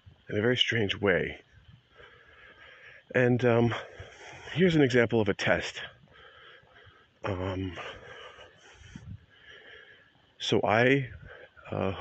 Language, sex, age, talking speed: English, male, 40-59, 85 wpm